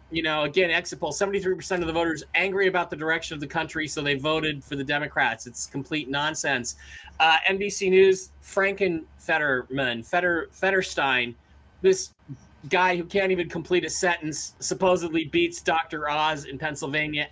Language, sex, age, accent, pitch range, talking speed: English, male, 30-49, American, 130-170 Hz, 155 wpm